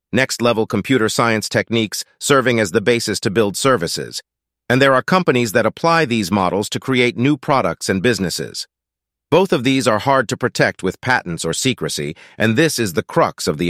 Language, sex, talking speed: English, male, 190 wpm